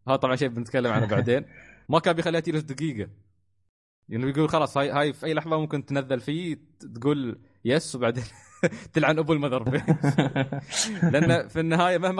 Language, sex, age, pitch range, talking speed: Arabic, male, 20-39, 100-145 Hz, 160 wpm